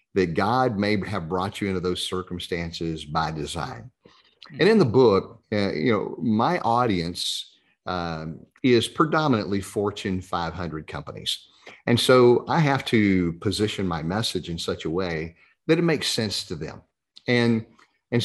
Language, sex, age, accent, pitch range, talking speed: English, male, 40-59, American, 90-115 Hz, 150 wpm